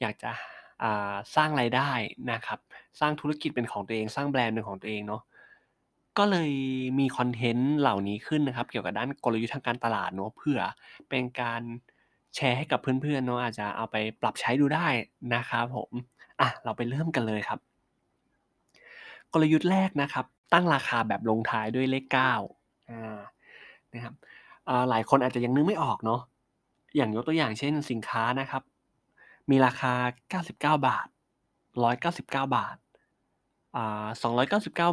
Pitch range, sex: 115-145 Hz, male